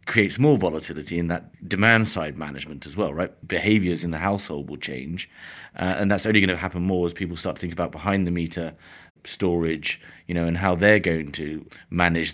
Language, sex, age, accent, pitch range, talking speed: English, male, 30-49, British, 80-95 Hz, 210 wpm